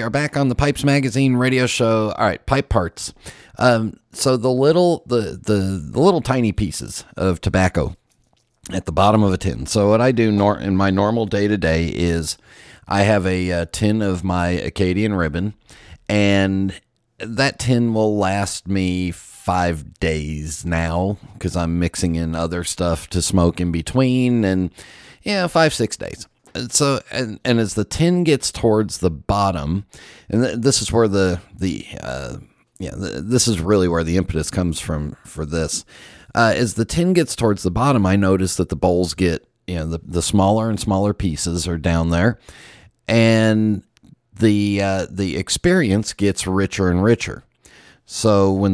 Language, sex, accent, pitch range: English, male, American, 90-115 Hz